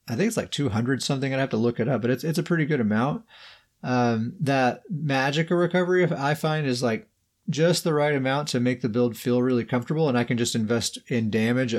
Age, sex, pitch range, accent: 30-49, male, 115-145 Hz, American